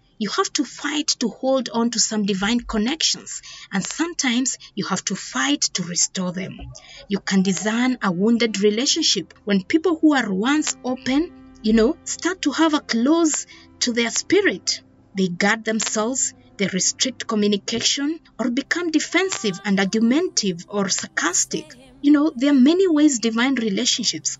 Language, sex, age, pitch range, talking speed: English, female, 30-49, 195-265 Hz, 155 wpm